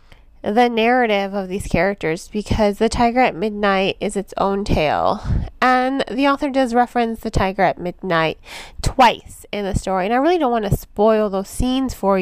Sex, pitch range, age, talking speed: female, 195-245 Hz, 20-39, 180 wpm